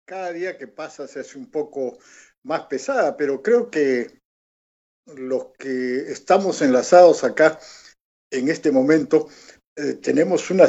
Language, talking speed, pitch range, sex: Spanish, 135 wpm, 130-185 Hz, male